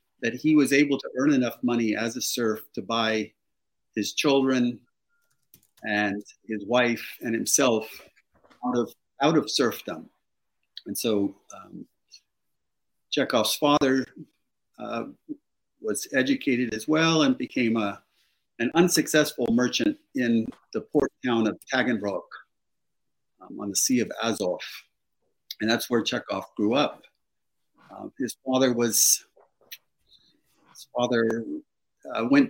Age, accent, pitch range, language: 50-69, American, 110-155 Hz, English